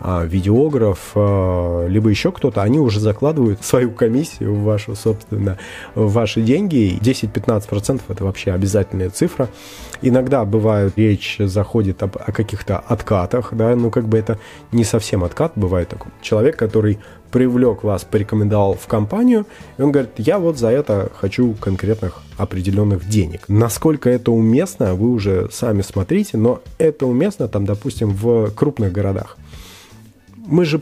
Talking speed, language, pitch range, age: 140 wpm, Russian, 100-125 Hz, 20-39